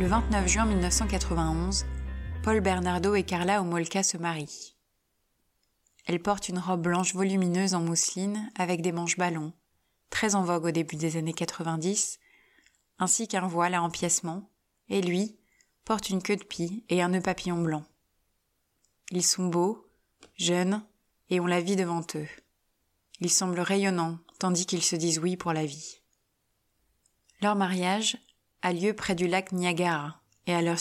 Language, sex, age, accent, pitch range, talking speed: French, female, 20-39, French, 160-185 Hz, 155 wpm